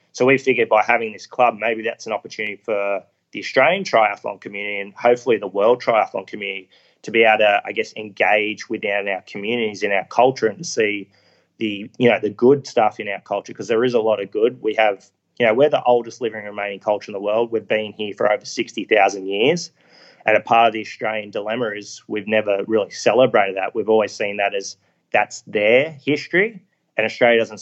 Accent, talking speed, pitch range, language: Australian, 220 wpm, 100-120 Hz, English